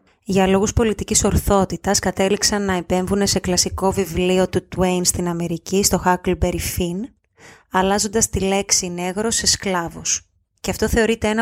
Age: 20-39